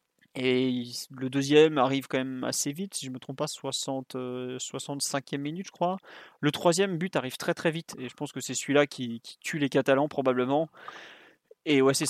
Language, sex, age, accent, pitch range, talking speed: French, male, 20-39, French, 130-155 Hz, 210 wpm